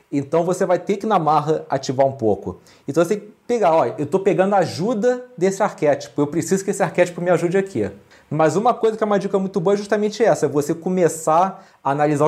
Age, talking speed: 40-59, 235 wpm